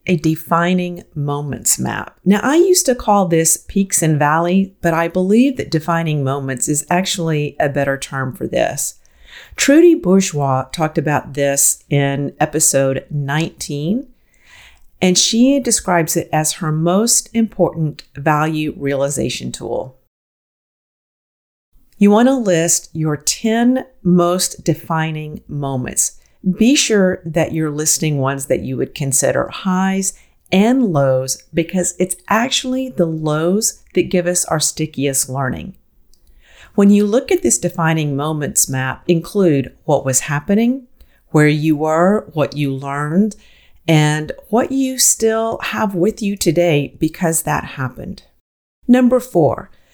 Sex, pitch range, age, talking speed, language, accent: female, 145-195 Hz, 50-69, 130 wpm, English, American